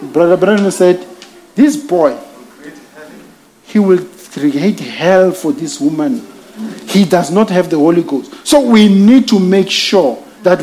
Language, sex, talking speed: English, male, 145 wpm